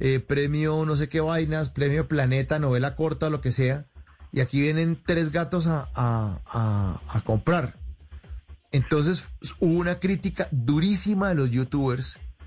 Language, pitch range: Spanish, 120-160 Hz